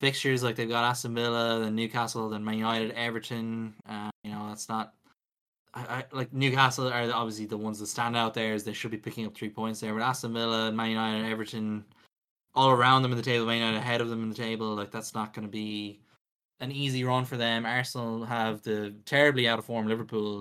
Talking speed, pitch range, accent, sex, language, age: 220 wpm, 110-120 Hz, Irish, male, English, 10-29